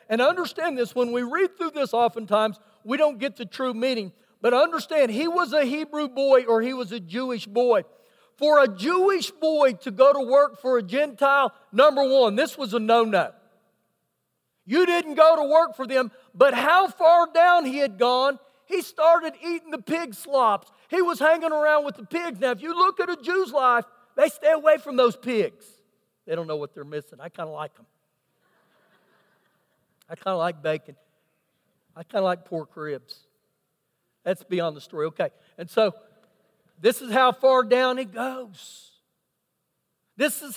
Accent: American